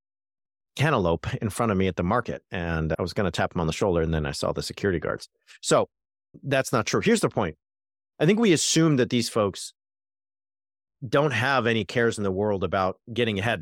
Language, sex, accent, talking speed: English, male, American, 215 wpm